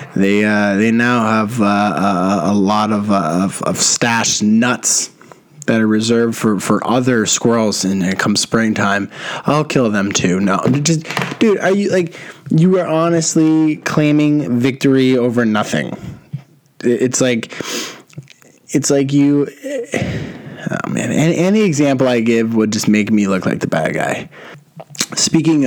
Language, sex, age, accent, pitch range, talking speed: English, male, 20-39, American, 105-150 Hz, 155 wpm